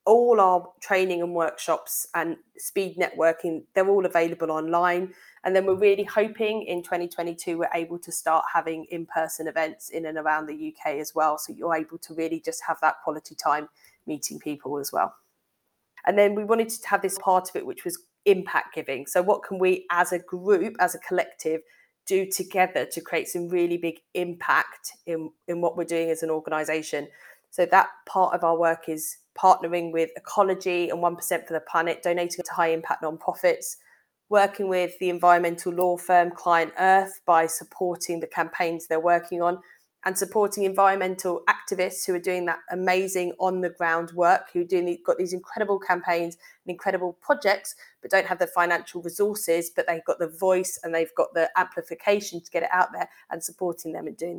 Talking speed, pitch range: 190 wpm, 165-190 Hz